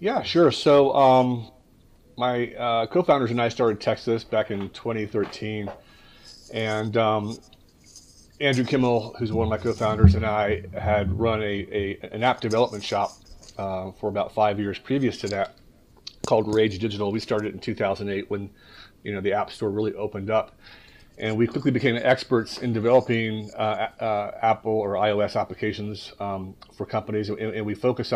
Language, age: English, 30-49